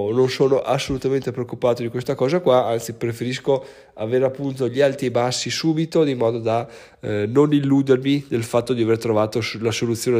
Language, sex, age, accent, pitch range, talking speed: Italian, male, 20-39, native, 110-130 Hz, 175 wpm